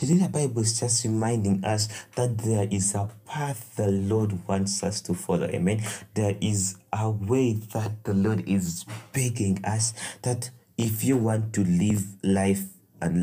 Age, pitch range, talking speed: 30-49, 95-115 Hz, 165 wpm